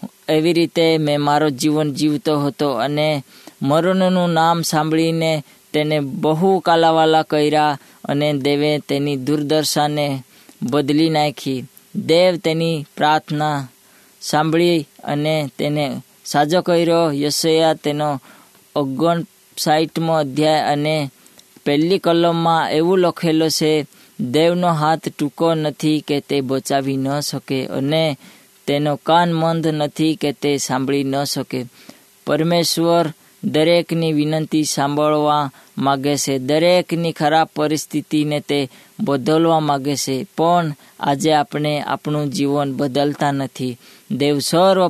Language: Hindi